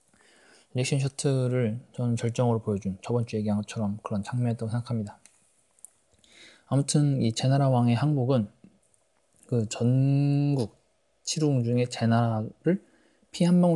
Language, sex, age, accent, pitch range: Korean, male, 20-39, native, 115-145 Hz